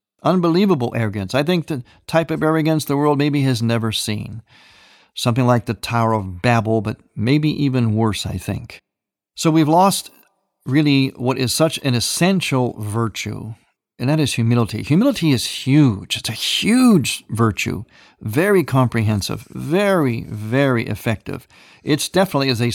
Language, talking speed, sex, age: English, 150 wpm, male, 50-69